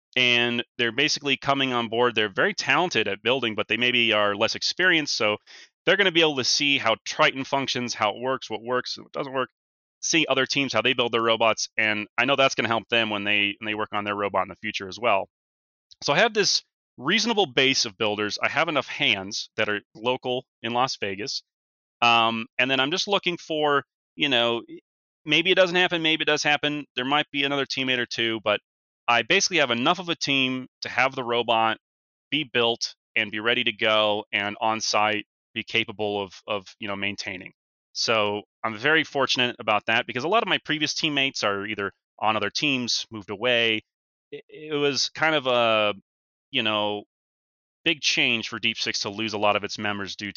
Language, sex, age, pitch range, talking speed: English, male, 30-49, 105-140 Hz, 210 wpm